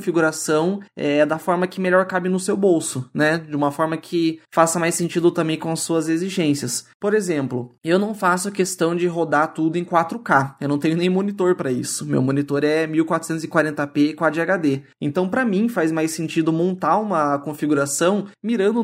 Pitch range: 150-185 Hz